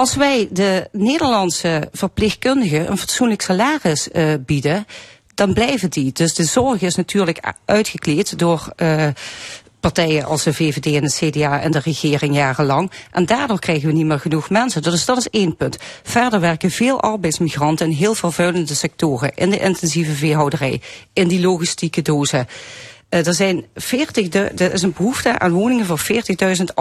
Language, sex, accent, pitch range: Dutch, female, Dutch, 155-210 Hz